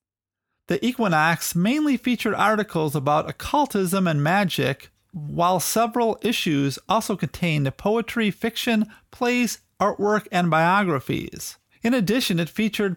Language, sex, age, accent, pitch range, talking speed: English, male, 40-59, American, 160-215 Hz, 110 wpm